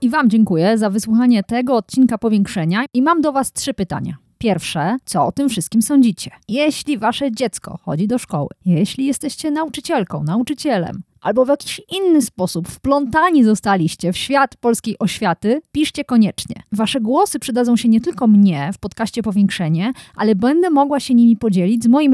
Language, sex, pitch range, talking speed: Polish, female, 195-275 Hz, 165 wpm